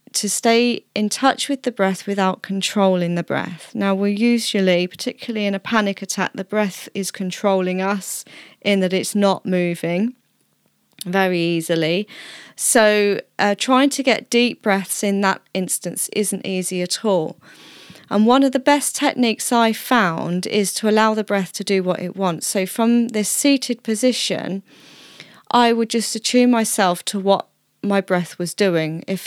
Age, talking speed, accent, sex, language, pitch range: 30-49, 165 wpm, British, female, English, 185-225 Hz